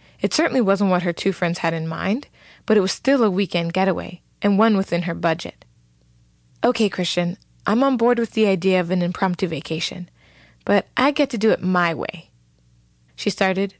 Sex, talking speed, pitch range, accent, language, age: female, 190 wpm, 165-205 Hz, American, English, 20-39